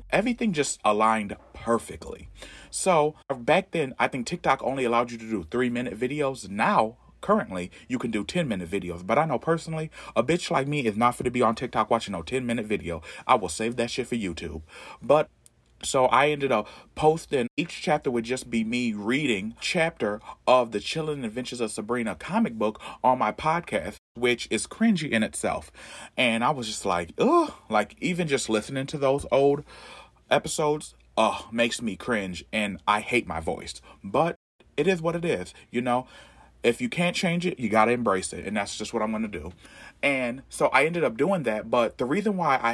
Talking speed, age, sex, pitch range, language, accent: 200 wpm, 30-49, male, 115-175 Hz, English, American